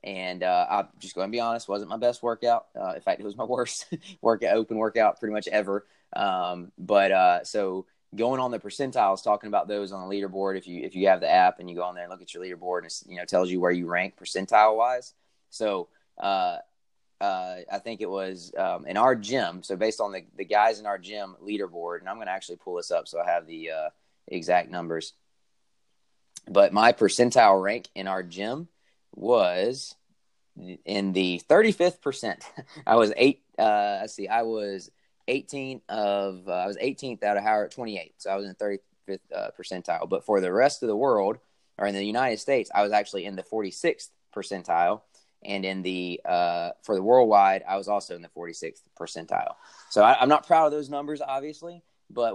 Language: English